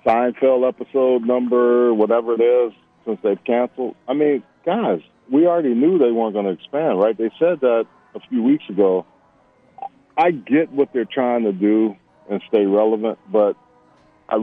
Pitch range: 105-140 Hz